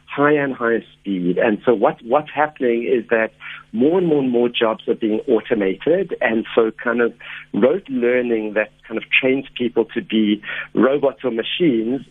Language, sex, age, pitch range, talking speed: English, male, 60-79, 115-140 Hz, 180 wpm